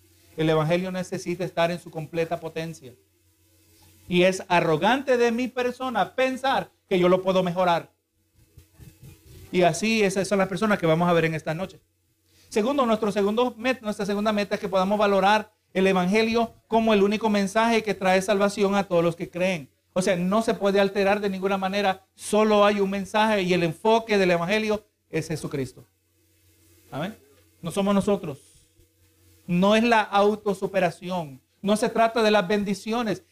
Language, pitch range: Spanish, 170-230 Hz